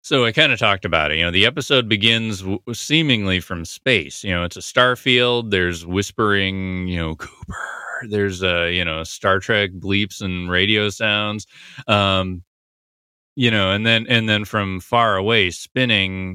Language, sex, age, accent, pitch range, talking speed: English, male, 30-49, American, 90-115 Hz, 180 wpm